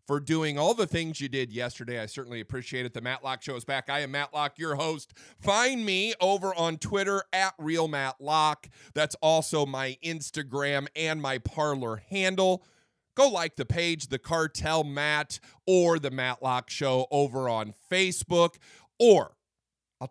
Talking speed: 160 wpm